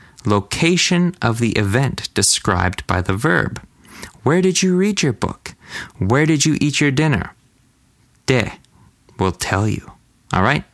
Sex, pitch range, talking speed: male, 95-135 Hz, 140 wpm